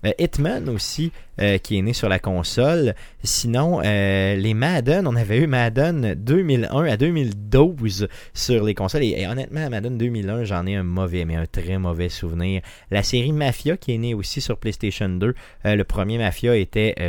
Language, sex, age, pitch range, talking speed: French, male, 30-49, 95-125 Hz, 185 wpm